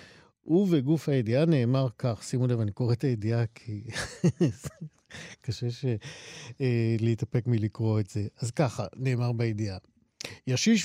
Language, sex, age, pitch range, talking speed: Hebrew, male, 50-69, 115-160 Hz, 120 wpm